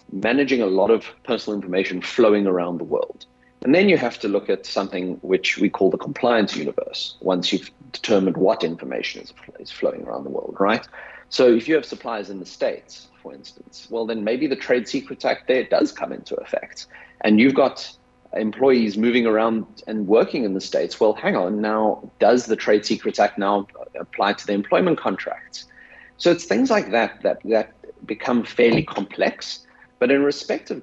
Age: 30-49